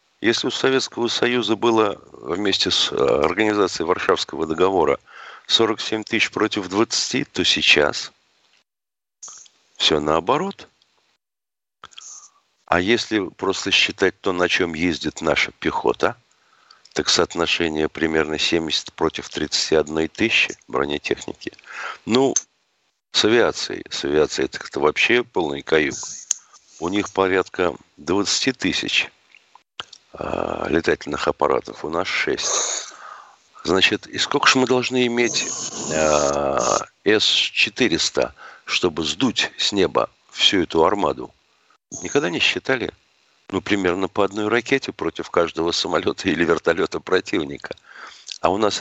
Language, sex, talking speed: Russian, male, 110 wpm